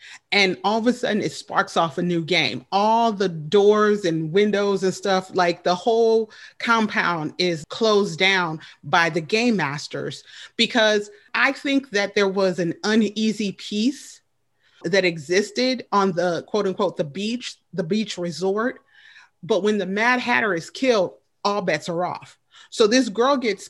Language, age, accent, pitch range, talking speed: English, 30-49, American, 185-245 Hz, 160 wpm